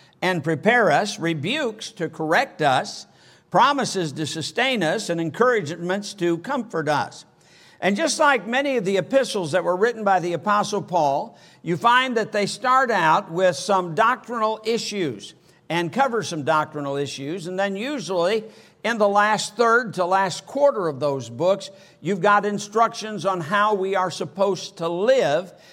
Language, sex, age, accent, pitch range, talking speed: English, male, 60-79, American, 170-220 Hz, 160 wpm